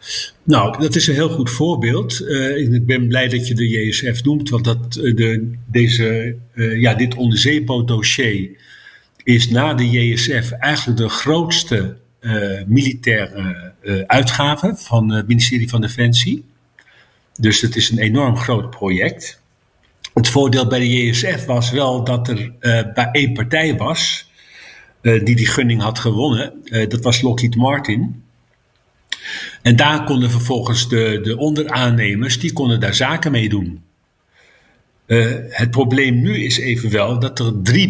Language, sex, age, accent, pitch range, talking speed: Dutch, male, 50-69, Dutch, 115-130 Hz, 145 wpm